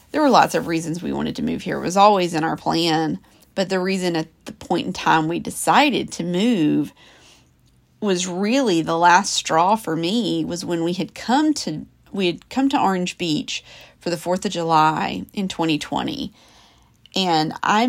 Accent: American